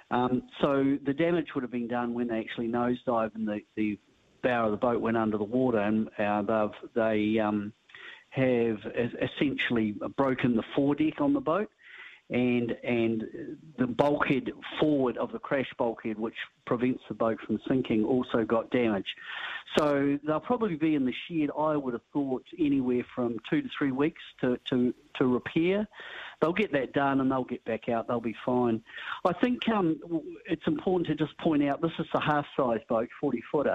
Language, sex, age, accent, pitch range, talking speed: English, male, 50-69, Australian, 115-150 Hz, 180 wpm